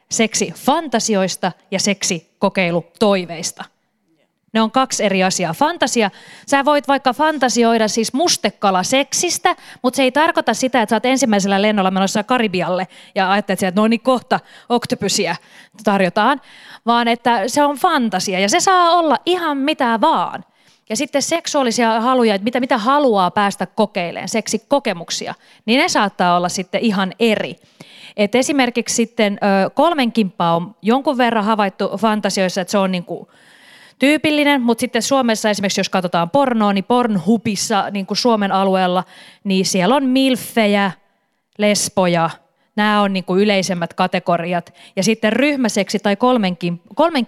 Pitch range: 190-255 Hz